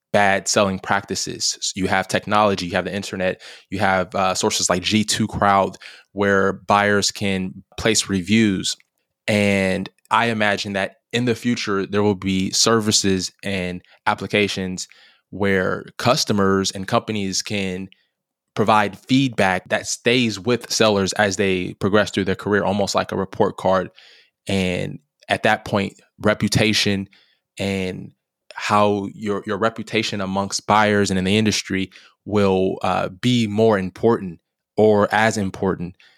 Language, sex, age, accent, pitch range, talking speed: English, male, 20-39, American, 95-105 Hz, 135 wpm